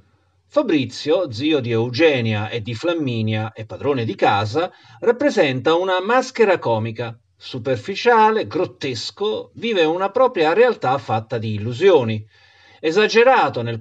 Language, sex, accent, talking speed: Italian, male, native, 115 wpm